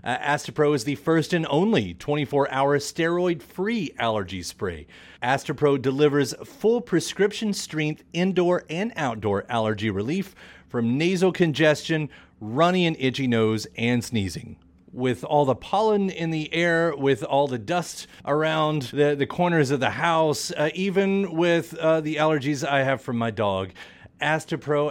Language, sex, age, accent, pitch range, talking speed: English, male, 30-49, American, 120-170 Hz, 145 wpm